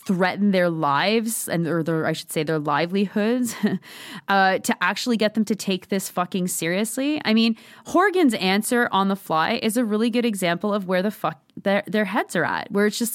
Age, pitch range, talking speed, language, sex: 20-39, 170-225 Hz, 205 wpm, English, female